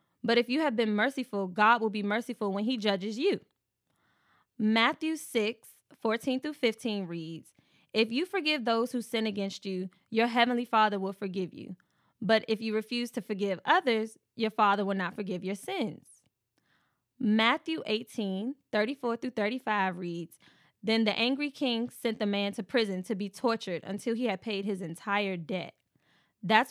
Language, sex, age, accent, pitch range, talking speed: English, female, 20-39, American, 195-235 Hz, 165 wpm